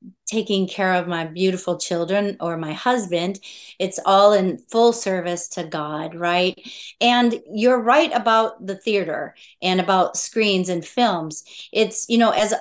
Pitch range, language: 185-230 Hz, English